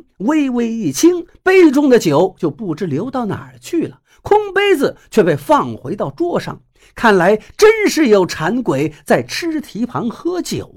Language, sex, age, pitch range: Chinese, male, 50-69, 185-280 Hz